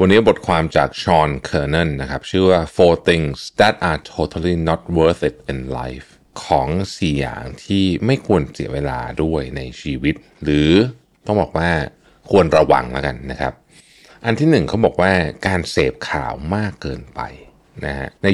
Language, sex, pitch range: Thai, male, 70-95 Hz